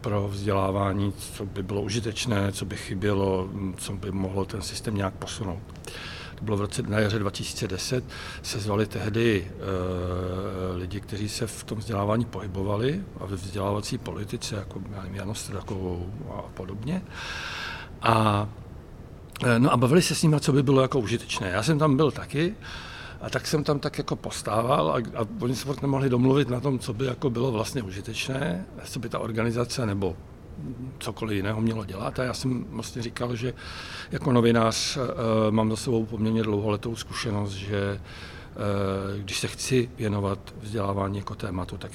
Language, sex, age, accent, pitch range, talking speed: Czech, male, 60-79, native, 95-120 Hz, 165 wpm